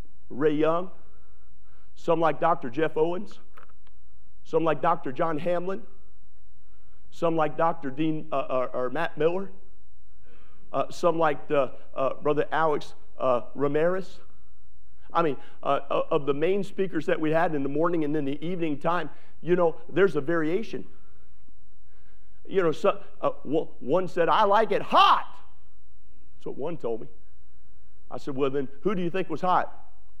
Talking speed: 155 wpm